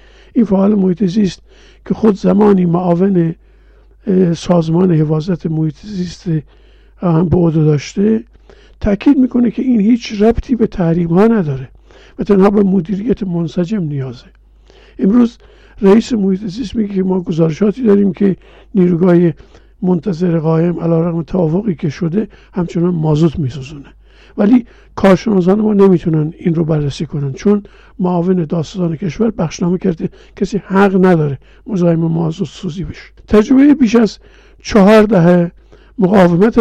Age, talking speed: 50-69, 125 wpm